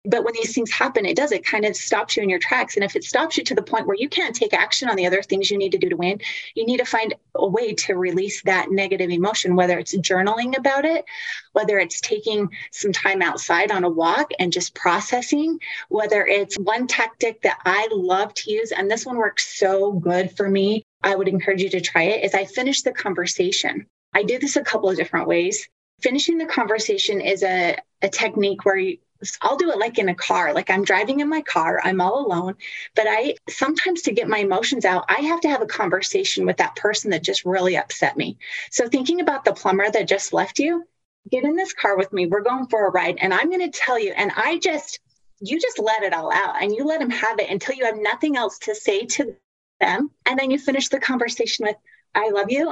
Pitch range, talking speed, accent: 195-295 Hz, 240 wpm, American